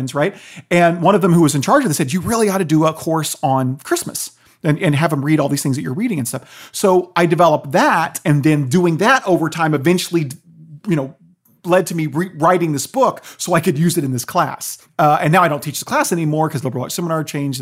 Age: 40-59